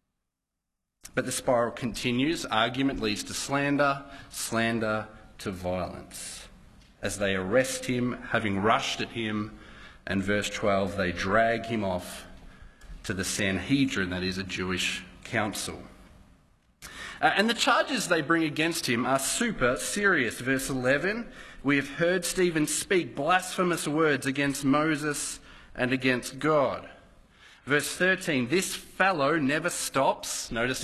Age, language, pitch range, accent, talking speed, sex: 40-59, English, 115-165 Hz, Australian, 130 wpm, male